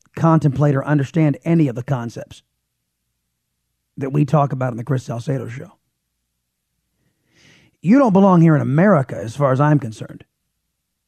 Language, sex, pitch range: English, male, 110-160 Hz